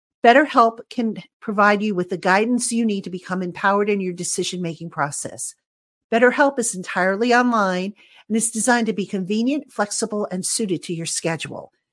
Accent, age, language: American, 50-69, English